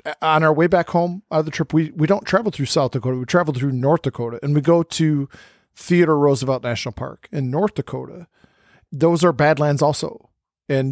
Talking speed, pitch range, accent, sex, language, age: 205 wpm, 140-170 Hz, American, male, English, 40-59